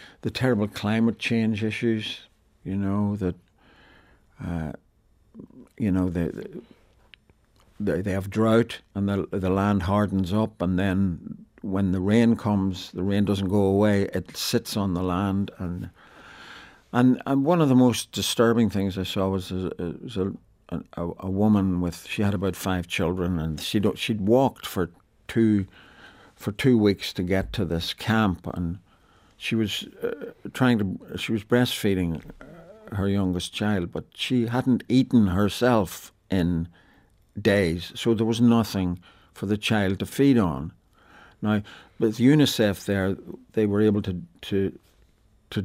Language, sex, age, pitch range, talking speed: English, male, 60-79, 95-115 Hz, 150 wpm